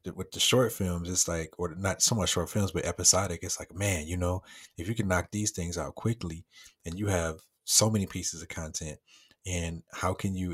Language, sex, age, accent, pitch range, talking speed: English, male, 30-49, American, 85-100 Hz, 220 wpm